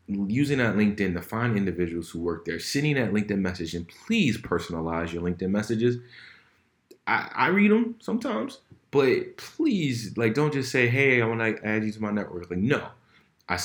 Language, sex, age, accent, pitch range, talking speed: English, male, 30-49, American, 90-115 Hz, 185 wpm